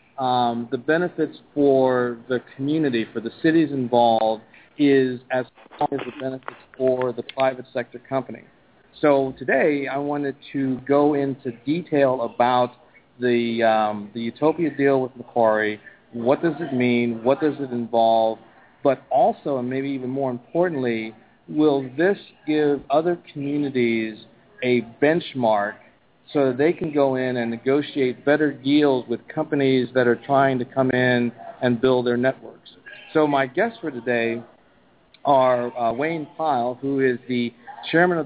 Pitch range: 120-145 Hz